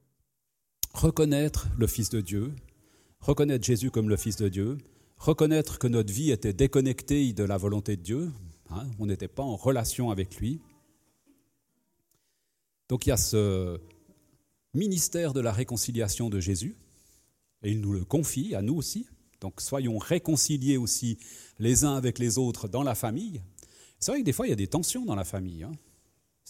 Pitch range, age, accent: 105-145 Hz, 40-59, French